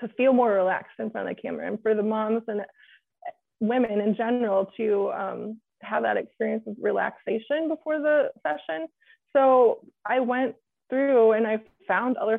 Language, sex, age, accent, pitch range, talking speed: English, female, 20-39, American, 215-245 Hz, 170 wpm